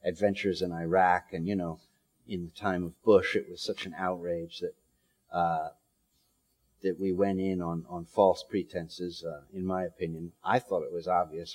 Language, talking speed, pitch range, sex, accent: English, 180 wpm, 90-130 Hz, male, American